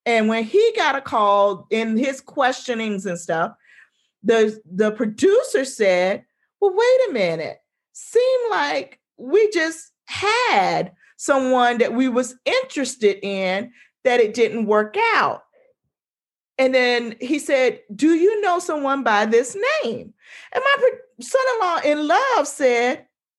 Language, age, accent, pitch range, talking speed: English, 40-59, American, 185-280 Hz, 135 wpm